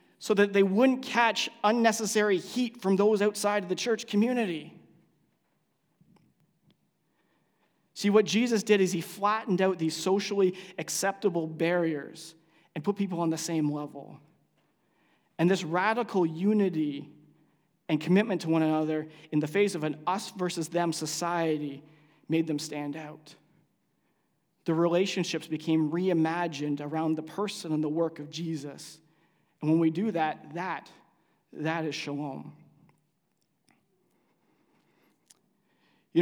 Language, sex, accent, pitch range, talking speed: English, male, American, 155-185 Hz, 125 wpm